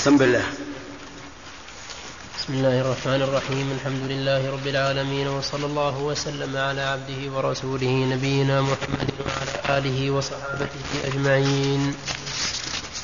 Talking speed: 90 wpm